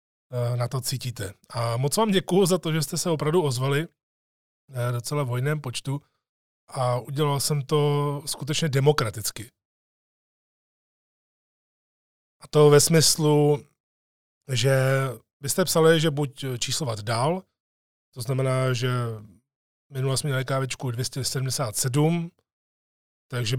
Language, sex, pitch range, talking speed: Czech, male, 130-155 Hz, 110 wpm